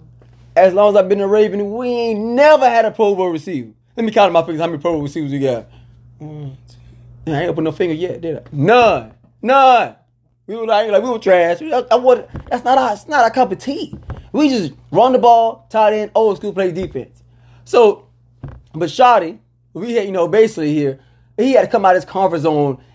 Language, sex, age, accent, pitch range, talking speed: English, male, 20-39, American, 145-225 Hz, 215 wpm